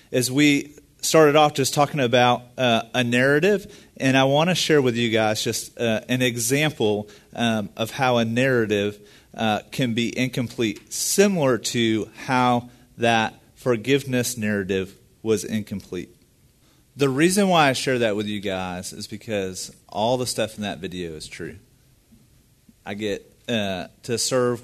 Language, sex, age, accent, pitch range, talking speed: English, male, 40-59, American, 105-125 Hz, 155 wpm